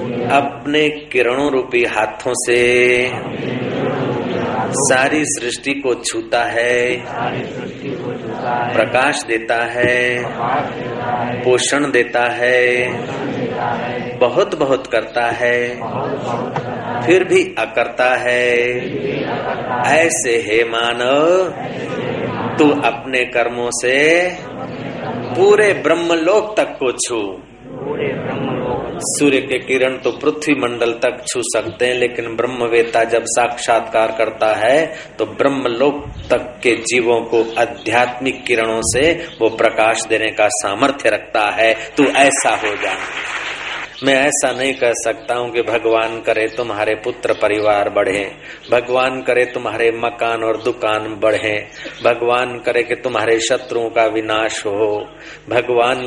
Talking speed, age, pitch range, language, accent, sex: 110 wpm, 40-59, 115-140 Hz, Hindi, native, male